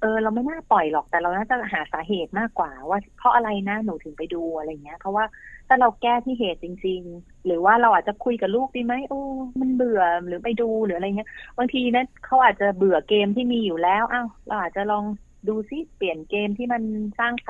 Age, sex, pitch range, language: 30-49, female, 180-220 Hz, Thai